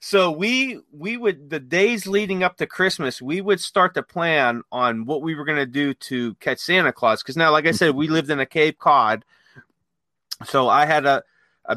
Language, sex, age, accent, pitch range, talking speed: English, male, 30-49, American, 125-165 Hz, 215 wpm